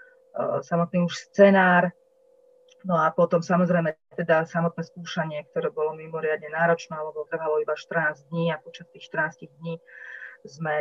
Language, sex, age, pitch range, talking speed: Slovak, female, 30-49, 155-180 Hz, 140 wpm